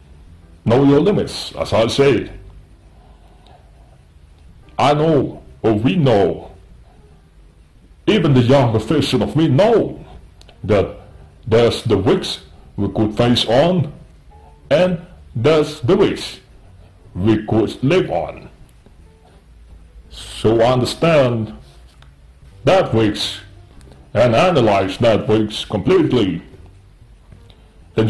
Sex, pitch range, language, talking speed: male, 80-125 Hz, Indonesian, 95 wpm